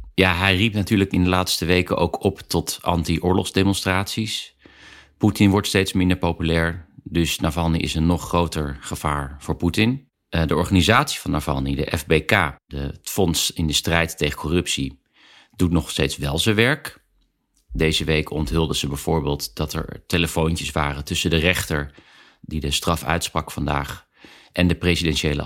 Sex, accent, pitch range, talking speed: male, Dutch, 75-95 Hz, 155 wpm